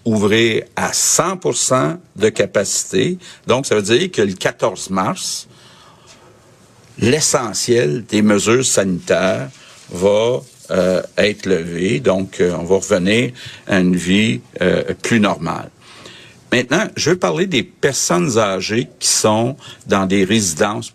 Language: French